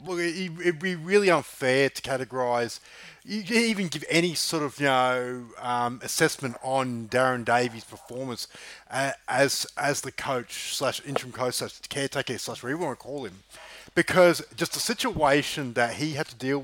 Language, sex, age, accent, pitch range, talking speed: English, male, 30-49, Australian, 140-195 Hz, 160 wpm